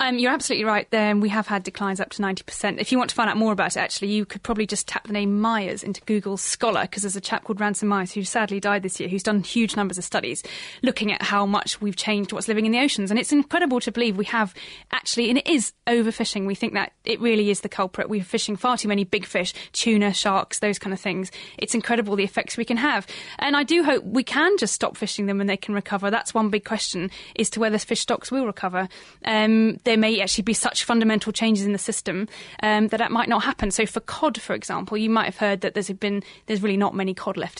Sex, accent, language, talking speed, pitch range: female, British, English, 260 wpm, 200-235 Hz